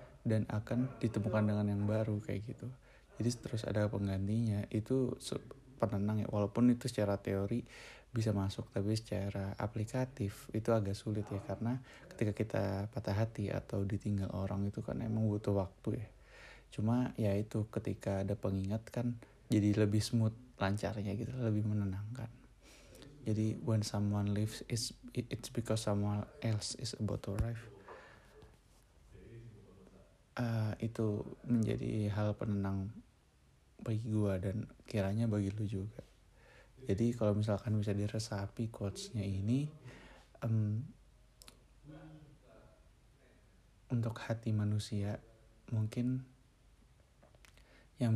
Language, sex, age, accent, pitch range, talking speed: Indonesian, male, 20-39, native, 105-120 Hz, 115 wpm